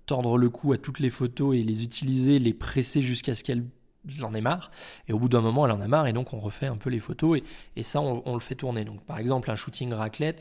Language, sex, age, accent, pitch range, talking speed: French, male, 20-39, French, 110-135 Hz, 285 wpm